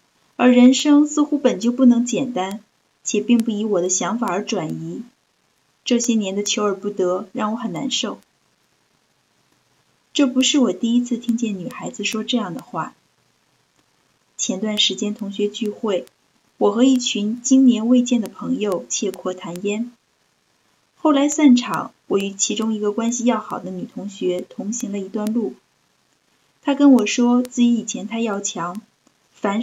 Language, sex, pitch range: Chinese, female, 210-255 Hz